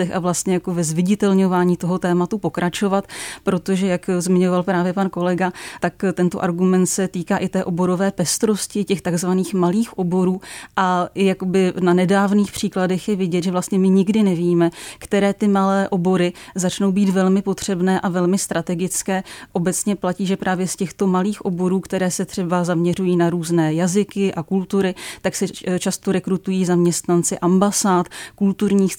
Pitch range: 175-190 Hz